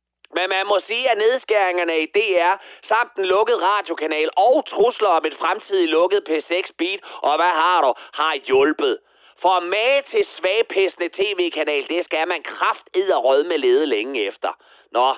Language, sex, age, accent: Danish, male, 30-49, native